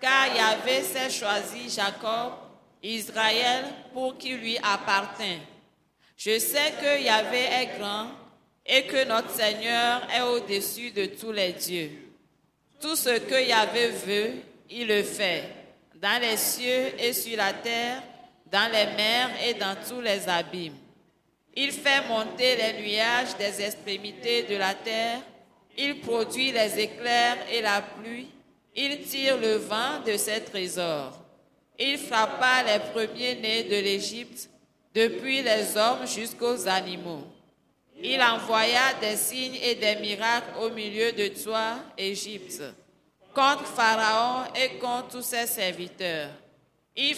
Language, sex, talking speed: French, female, 135 wpm